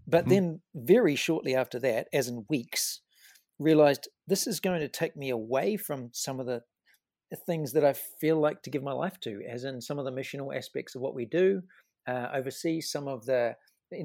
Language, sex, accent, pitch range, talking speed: English, male, Australian, 130-175 Hz, 205 wpm